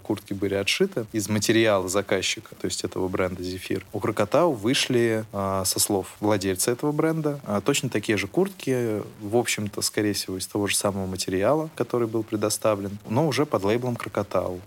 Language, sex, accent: Russian, male, native